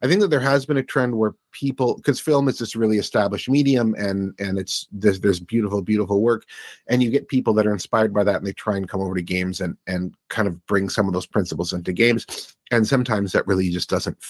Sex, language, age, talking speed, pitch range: male, English, 30-49, 250 wpm, 95-115 Hz